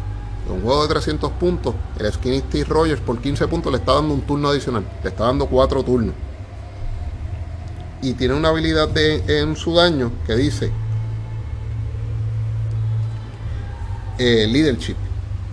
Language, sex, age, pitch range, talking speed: Spanish, male, 30-49, 90-125 Hz, 135 wpm